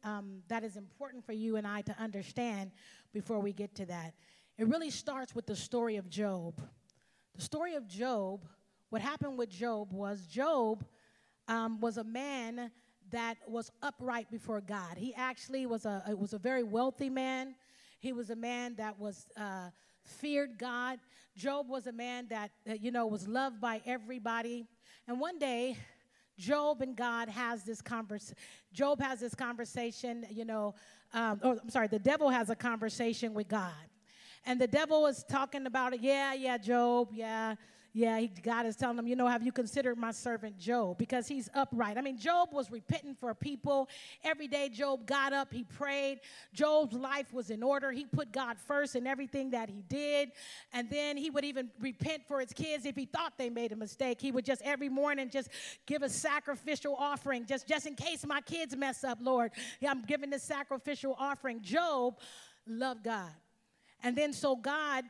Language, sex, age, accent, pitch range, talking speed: English, female, 30-49, American, 225-275 Hz, 185 wpm